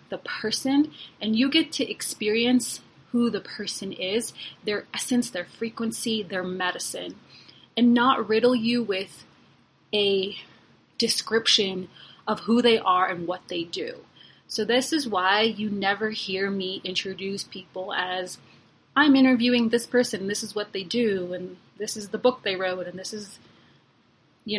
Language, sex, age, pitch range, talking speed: English, female, 30-49, 190-240 Hz, 155 wpm